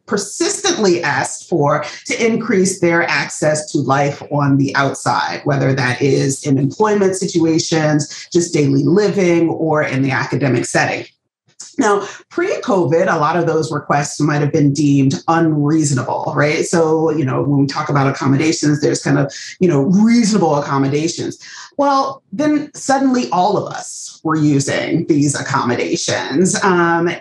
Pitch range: 145-195 Hz